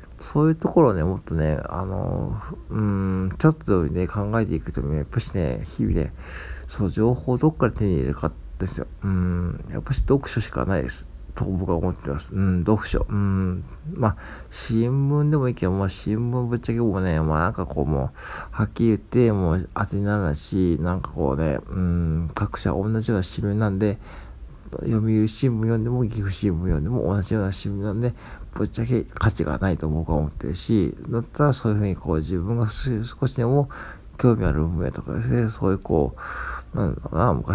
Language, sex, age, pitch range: Japanese, male, 50-69, 80-115 Hz